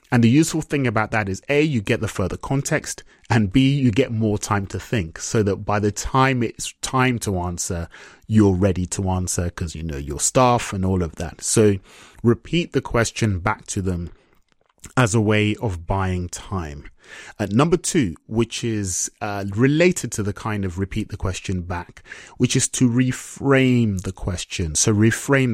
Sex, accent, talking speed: male, British, 190 wpm